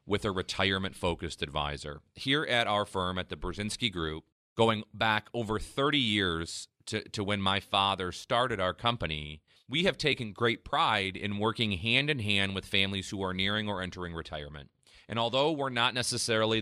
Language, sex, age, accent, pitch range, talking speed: English, male, 30-49, American, 95-120 Hz, 165 wpm